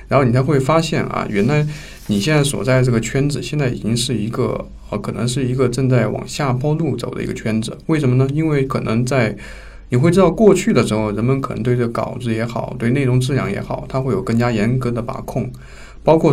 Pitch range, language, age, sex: 110-135 Hz, Chinese, 20-39, male